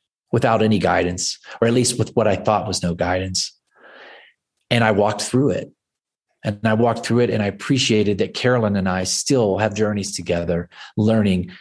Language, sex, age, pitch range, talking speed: English, male, 40-59, 95-110 Hz, 180 wpm